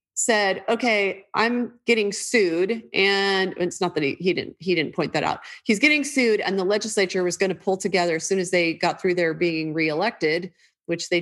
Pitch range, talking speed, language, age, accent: 170-215 Hz, 210 wpm, English, 30-49, American